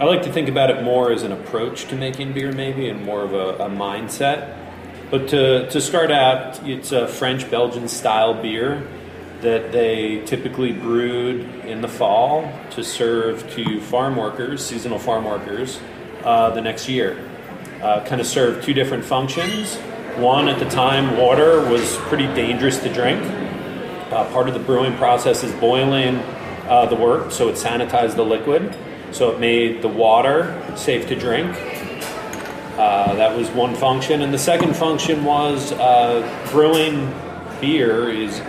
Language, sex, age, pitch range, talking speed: English, male, 30-49, 115-135 Hz, 160 wpm